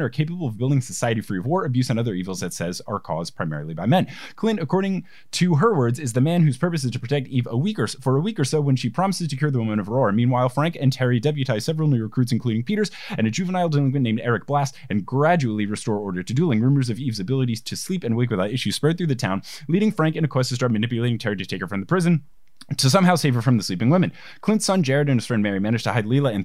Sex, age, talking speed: male, 20-39, 275 wpm